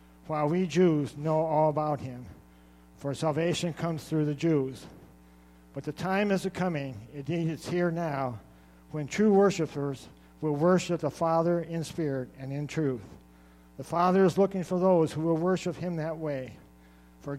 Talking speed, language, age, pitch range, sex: 160 wpm, English, 60-79, 125-175 Hz, male